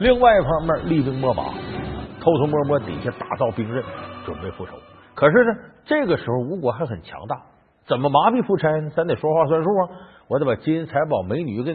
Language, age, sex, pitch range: Chinese, 50-69, male, 140-215 Hz